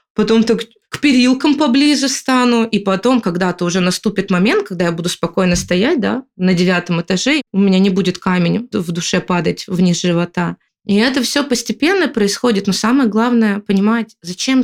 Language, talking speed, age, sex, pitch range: Russian, 170 wpm, 20-39, female, 185-230 Hz